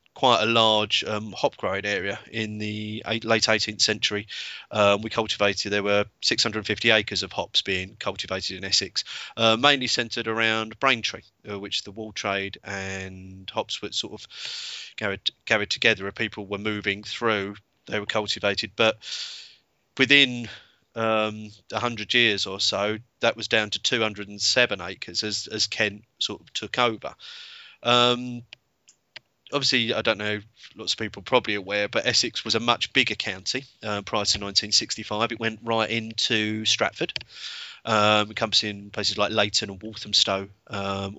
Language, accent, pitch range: English, British, 105-115 Hz